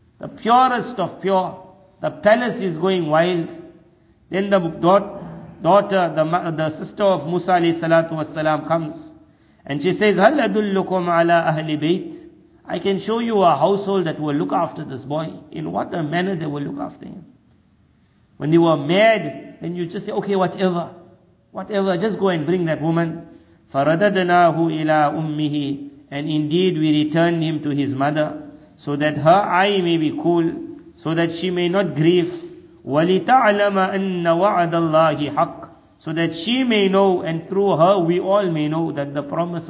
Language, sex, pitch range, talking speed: Dutch, male, 150-185 Hz, 160 wpm